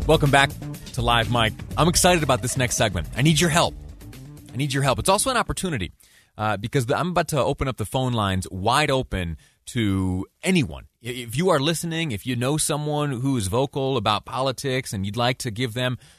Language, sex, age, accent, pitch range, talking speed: English, male, 30-49, American, 105-145 Hz, 210 wpm